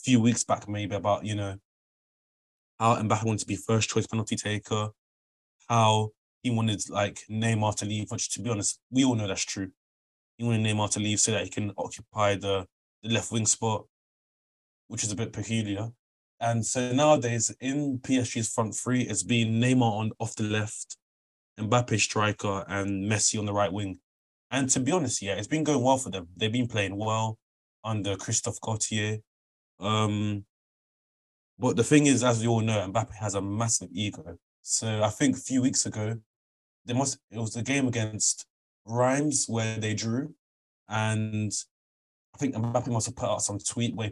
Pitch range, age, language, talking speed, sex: 100-115 Hz, 20-39, English, 180 wpm, male